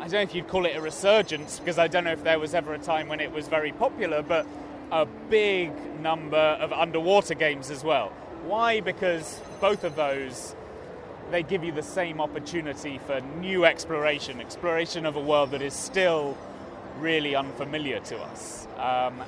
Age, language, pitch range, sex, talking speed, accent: 20-39, English, 145-180 Hz, male, 185 wpm, British